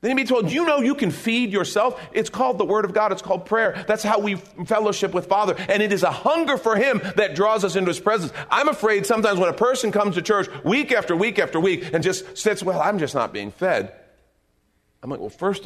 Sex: male